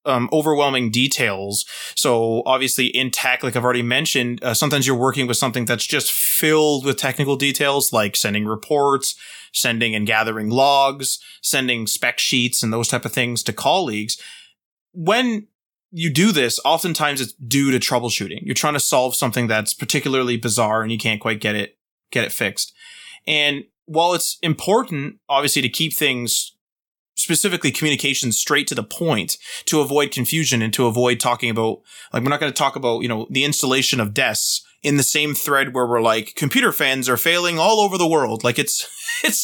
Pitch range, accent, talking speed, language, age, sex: 120-155 Hz, American, 180 wpm, English, 20-39, male